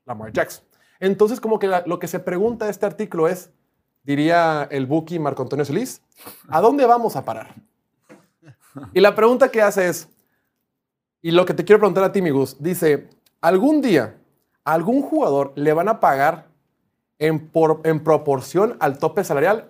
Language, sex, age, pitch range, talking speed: Spanish, male, 30-49, 145-205 Hz, 175 wpm